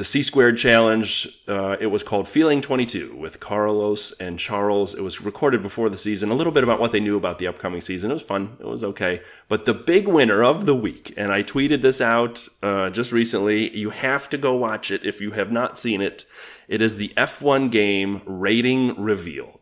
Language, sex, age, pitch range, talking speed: English, male, 30-49, 100-125 Hz, 225 wpm